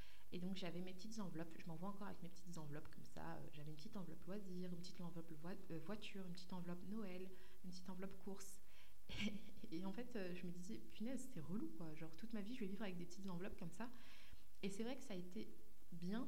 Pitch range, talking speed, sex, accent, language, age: 165-200 Hz, 245 wpm, female, French, French, 20-39